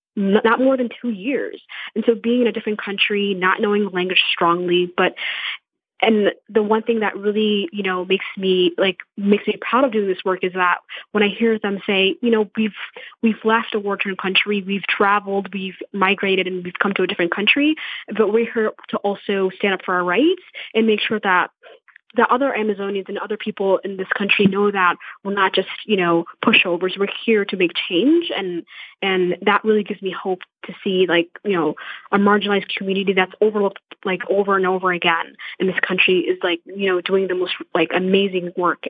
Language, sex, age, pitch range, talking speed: English, female, 20-39, 185-210 Hz, 205 wpm